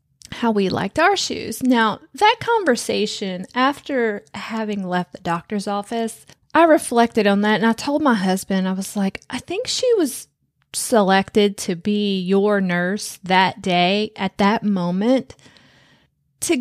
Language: English